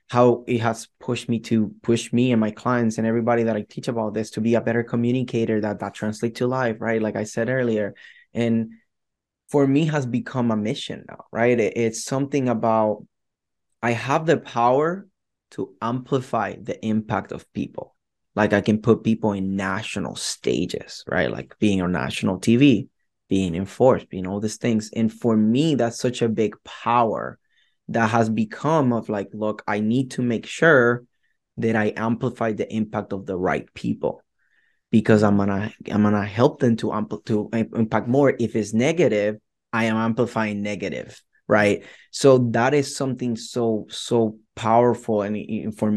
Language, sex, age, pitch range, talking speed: English, male, 20-39, 105-120 Hz, 170 wpm